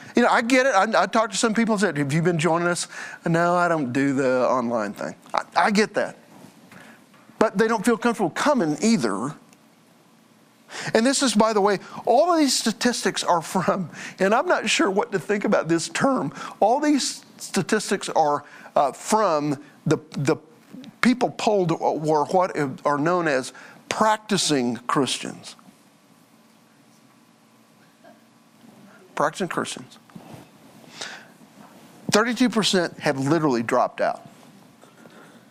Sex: male